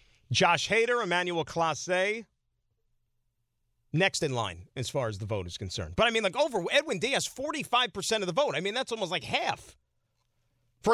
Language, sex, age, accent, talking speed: English, male, 40-59, American, 180 wpm